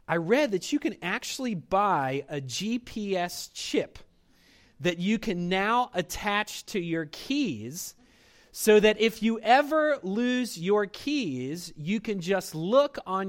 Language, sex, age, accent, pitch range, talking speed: English, male, 30-49, American, 145-215 Hz, 140 wpm